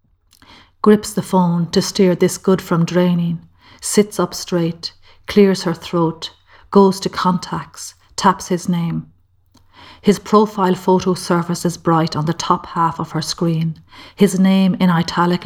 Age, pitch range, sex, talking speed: 40-59, 165-185 Hz, female, 150 wpm